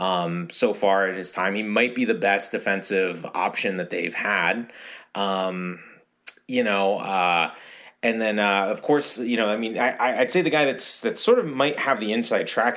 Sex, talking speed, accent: male, 200 wpm, American